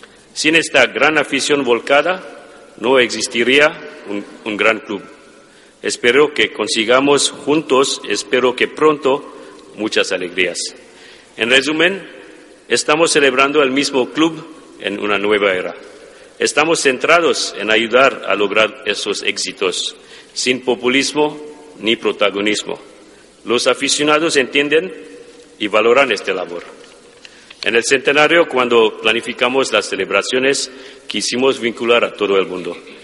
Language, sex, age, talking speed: Spanish, male, 50-69, 115 wpm